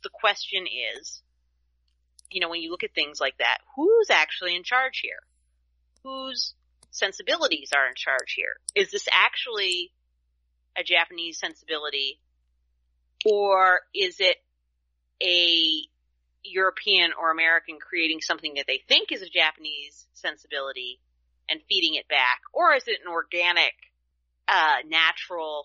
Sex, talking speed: female, 130 wpm